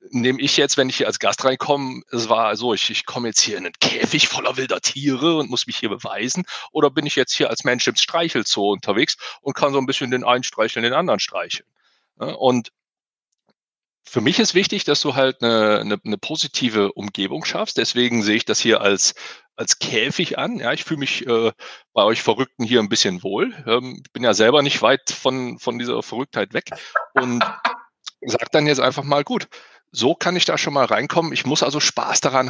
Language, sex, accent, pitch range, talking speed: German, male, German, 110-140 Hz, 210 wpm